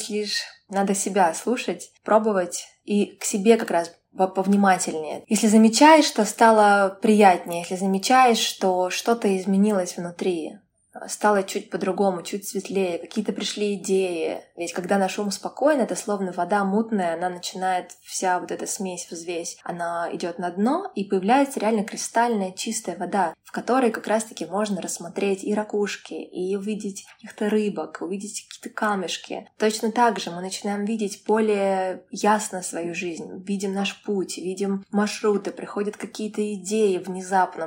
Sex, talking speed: female, 145 wpm